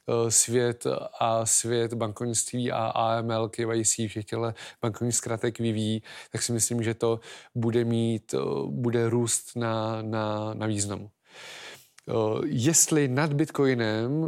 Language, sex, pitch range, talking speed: Slovak, male, 115-120 Hz, 120 wpm